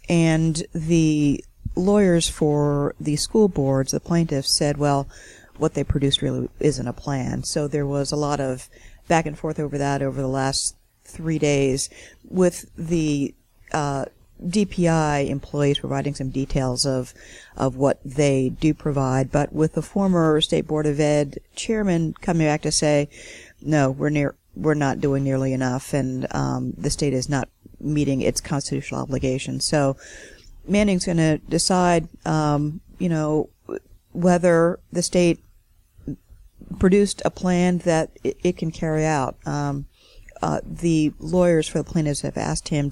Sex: female